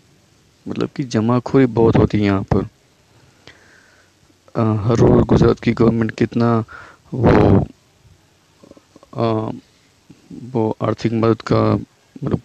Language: Hindi